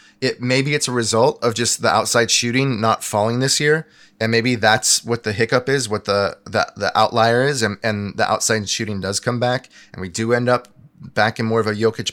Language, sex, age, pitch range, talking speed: English, male, 20-39, 105-120 Hz, 230 wpm